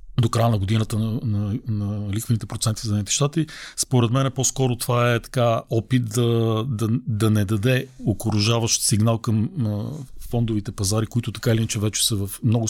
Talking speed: 190 wpm